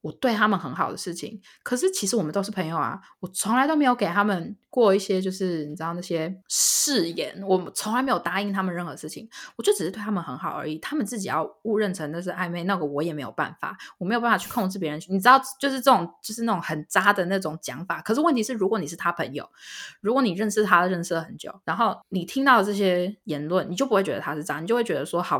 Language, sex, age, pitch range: Chinese, female, 20-39, 165-220 Hz